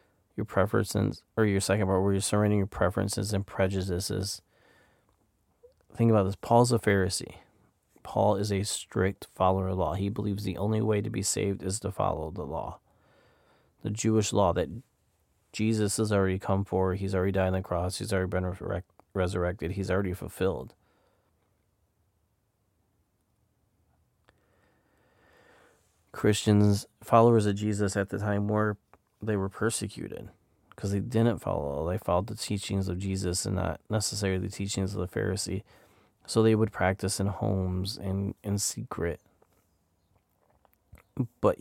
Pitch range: 90-105 Hz